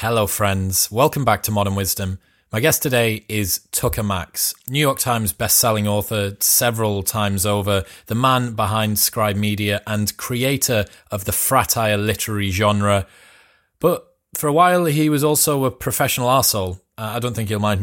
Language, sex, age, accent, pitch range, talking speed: English, male, 20-39, British, 105-125 Hz, 160 wpm